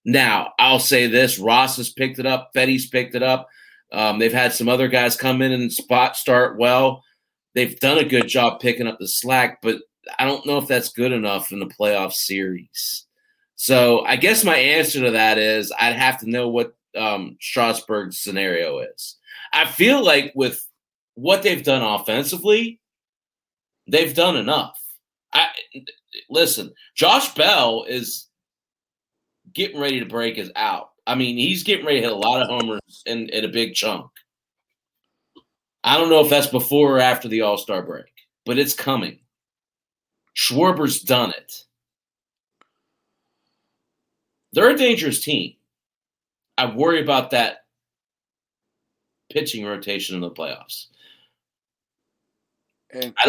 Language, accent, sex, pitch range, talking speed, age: English, American, male, 115-155 Hz, 150 wpm, 30-49